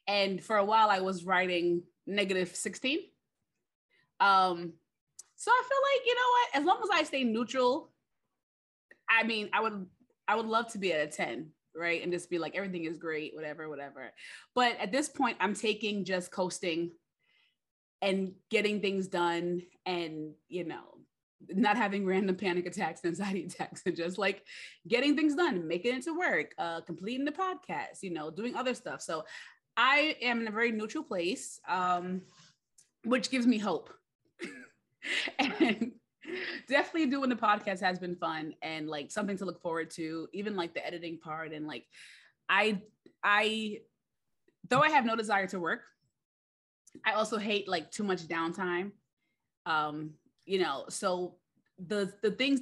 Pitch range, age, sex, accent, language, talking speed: 170-225 Hz, 20-39, female, American, English, 165 wpm